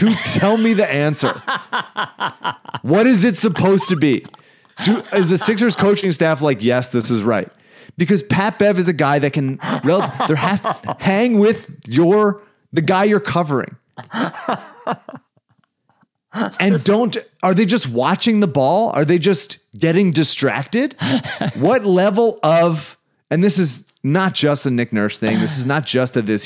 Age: 30-49